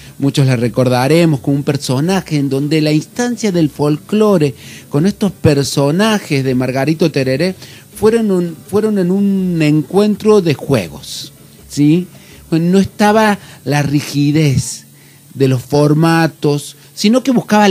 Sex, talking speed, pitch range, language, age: male, 120 wpm, 140-185 Hz, Spanish, 40-59